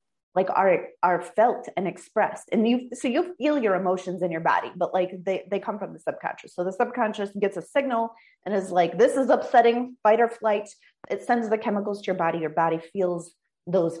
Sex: female